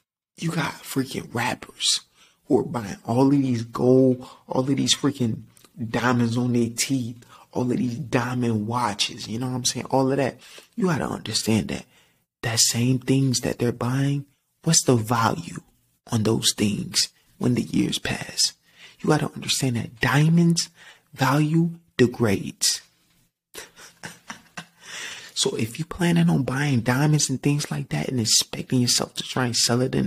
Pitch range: 115-140 Hz